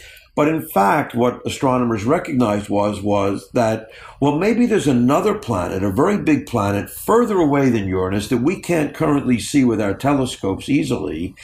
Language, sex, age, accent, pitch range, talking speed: English, male, 50-69, American, 110-140 Hz, 165 wpm